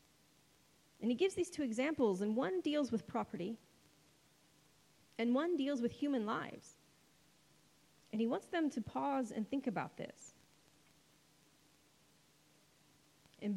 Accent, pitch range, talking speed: American, 205-275 Hz, 125 wpm